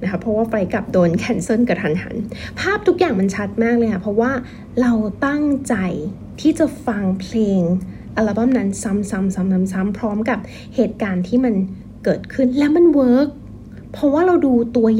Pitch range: 195-250 Hz